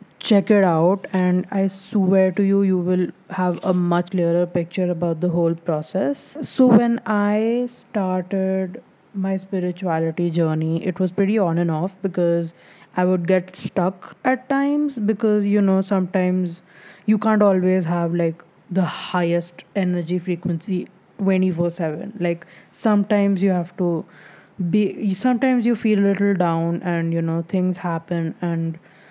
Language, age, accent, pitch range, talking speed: English, 20-39, Indian, 175-205 Hz, 145 wpm